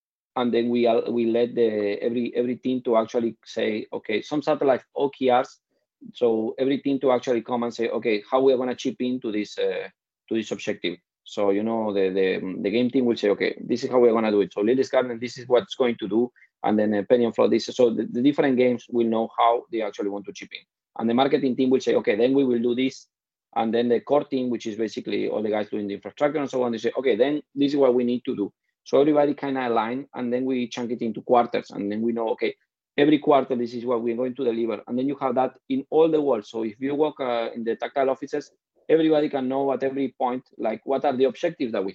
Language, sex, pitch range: English, male, 115-140 Hz